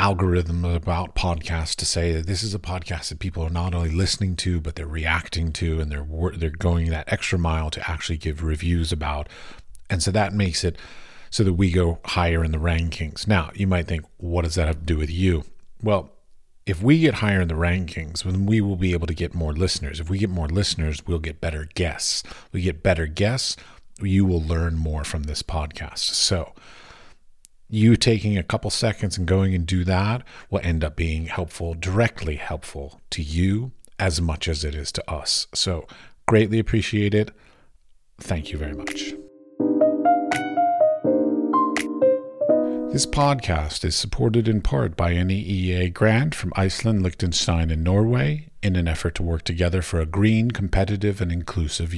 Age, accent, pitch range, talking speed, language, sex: 40-59, American, 80-100 Hz, 180 wpm, English, male